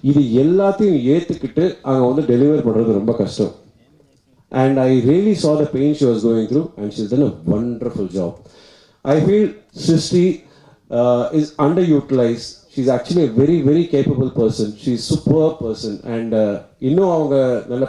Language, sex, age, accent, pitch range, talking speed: Tamil, male, 30-49, native, 120-150 Hz, 100 wpm